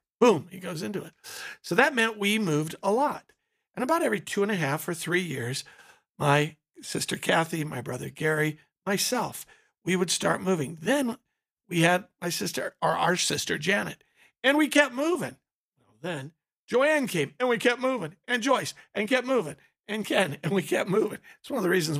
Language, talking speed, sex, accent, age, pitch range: English, 190 wpm, male, American, 50-69, 155-215 Hz